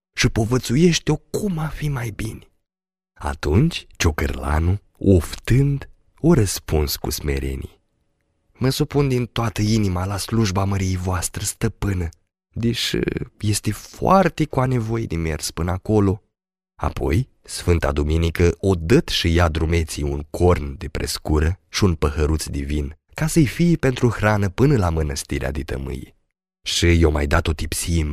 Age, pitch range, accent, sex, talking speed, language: 30-49, 80-115 Hz, native, male, 140 wpm, Romanian